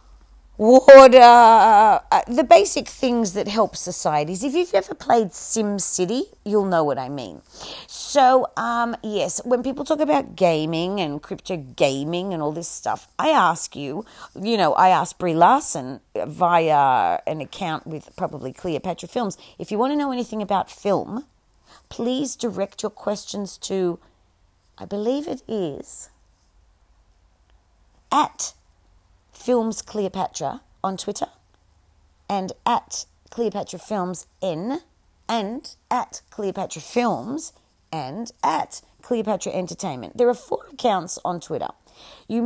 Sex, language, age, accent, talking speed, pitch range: female, English, 40-59, Australian, 125 wpm, 150-235 Hz